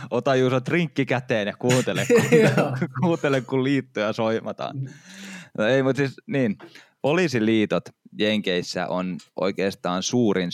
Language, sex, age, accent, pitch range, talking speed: Finnish, male, 20-39, native, 95-120 Hz, 130 wpm